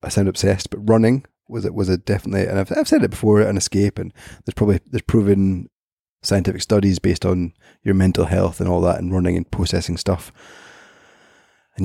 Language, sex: English, male